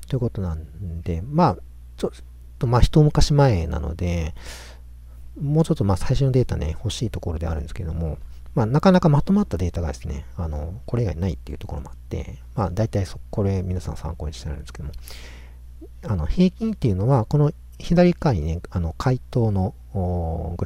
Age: 40-59